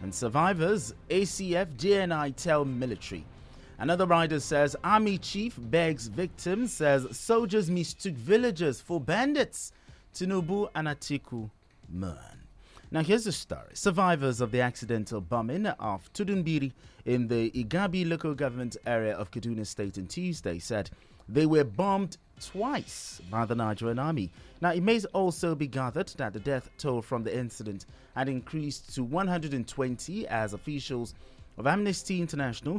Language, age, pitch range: English, 30-49, 115-170 Hz